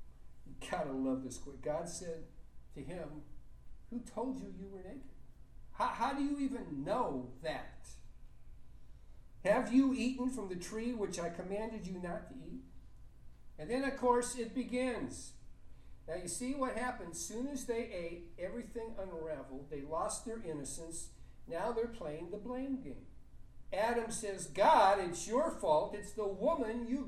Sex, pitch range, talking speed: male, 170-240 Hz, 155 wpm